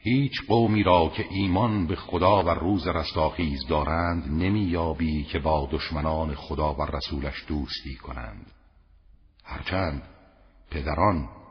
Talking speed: 120 wpm